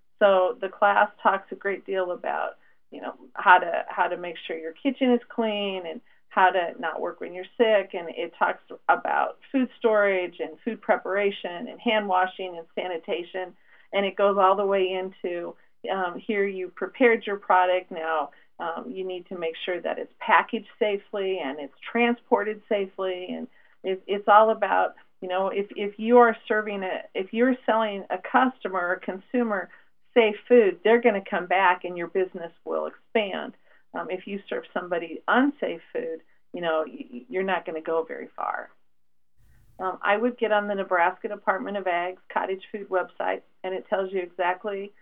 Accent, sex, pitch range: American, female, 180-215 Hz